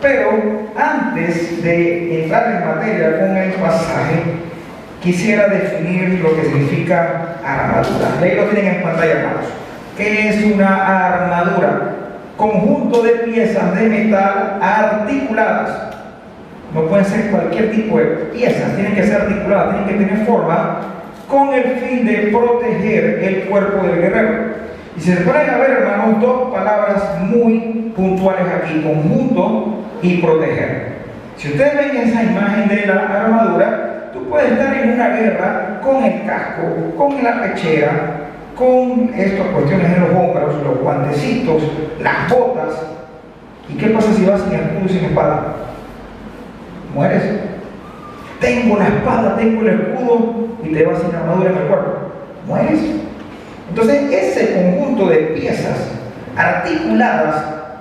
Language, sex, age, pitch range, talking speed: Spanish, male, 40-59, 175-230 Hz, 135 wpm